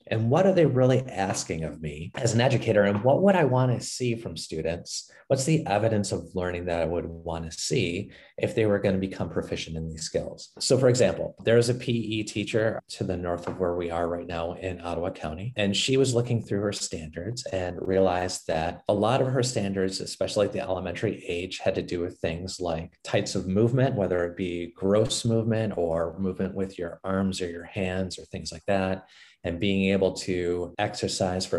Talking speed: 215 wpm